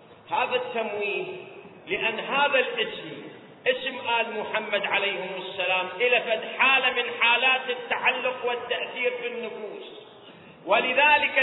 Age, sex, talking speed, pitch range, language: 40-59, male, 100 wpm, 220-315 Hz, Arabic